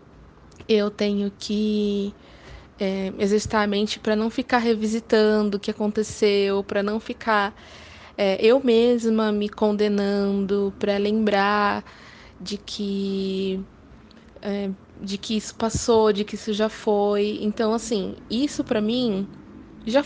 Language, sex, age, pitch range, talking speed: Portuguese, female, 20-39, 195-225 Hz, 115 wpm